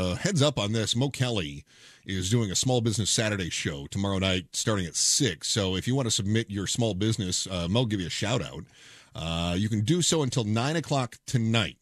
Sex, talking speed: male, 220 wpm